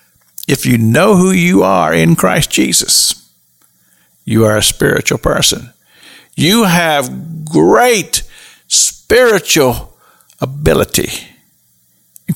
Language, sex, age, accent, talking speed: English, male, 50-69, American, 95 wpm